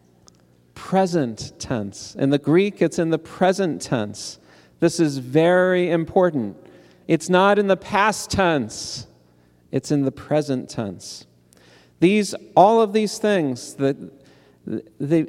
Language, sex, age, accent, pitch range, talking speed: English, male, 40-59, American, 125-180 Hz, 125 wpm